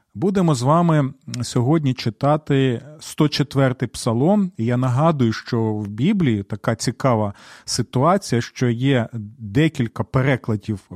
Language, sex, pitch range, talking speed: Ukrainian, male, 115-155 Hz, 105 wpm